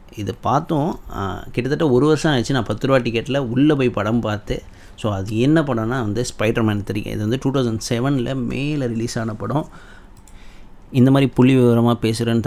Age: 30-49